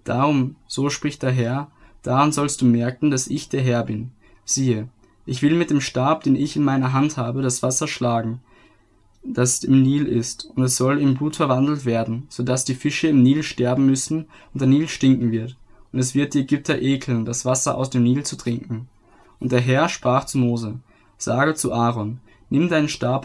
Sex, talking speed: male, 200 wpm